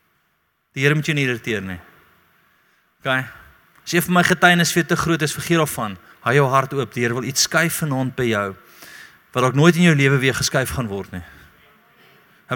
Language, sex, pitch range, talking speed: English, male, 120-185 Hz, 205 wpm